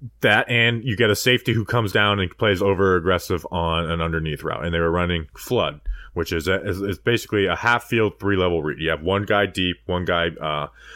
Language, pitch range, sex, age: English, 85-115 Hz, male, 20-39